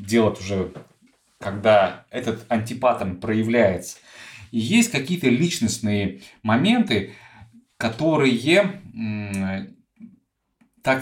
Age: 20-39